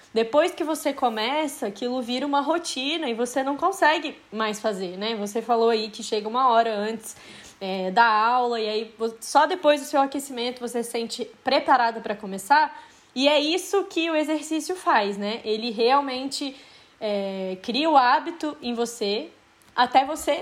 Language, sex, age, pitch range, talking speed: Portuguese, female, 20-39, 215-275 Hz, 160 wpm